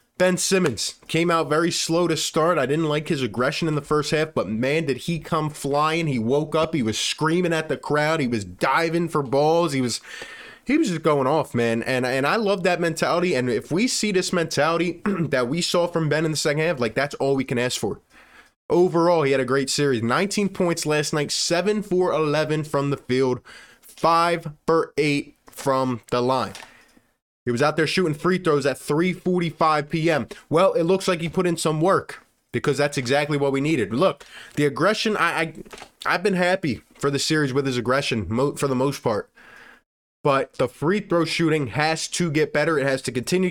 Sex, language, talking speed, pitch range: male, English, 210 wpm, 140-175 Hz